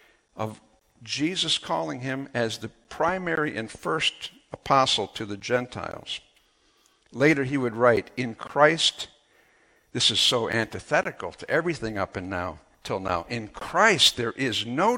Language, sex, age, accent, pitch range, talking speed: English, male, 60-79, American, 115-175 Hz, 140 wpm